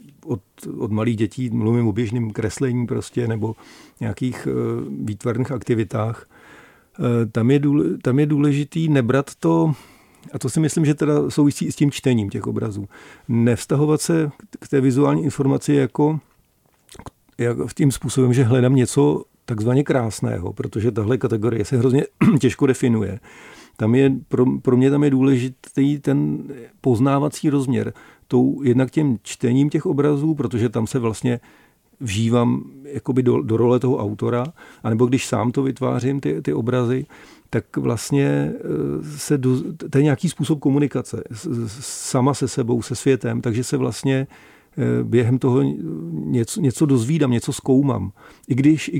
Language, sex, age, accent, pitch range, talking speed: Czech, male, 50-69, native, 120-140 Hz, 150 wpm